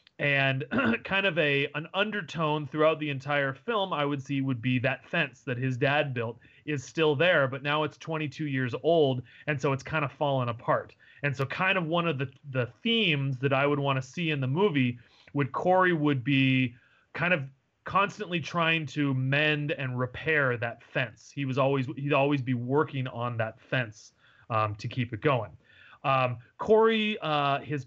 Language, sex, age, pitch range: English, male, 30-49, 130-160 Hz